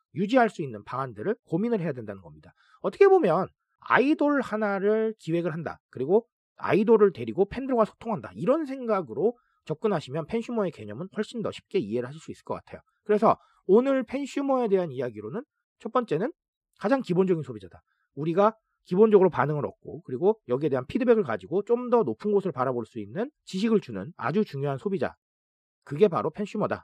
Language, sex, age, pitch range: Korean, male, 40-59, 140-230 Hz